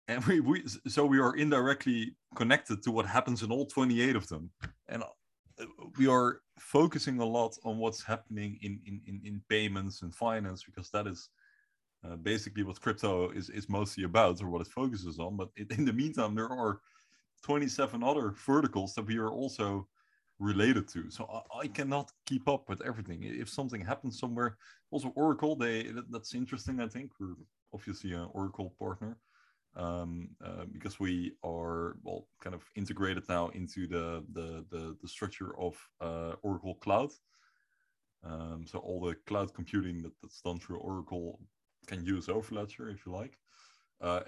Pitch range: 90-115 Hz